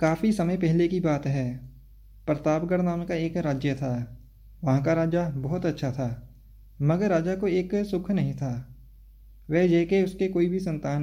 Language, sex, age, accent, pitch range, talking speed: Hindi, male, 20-39, native, 130-180 Hz, 170 wpm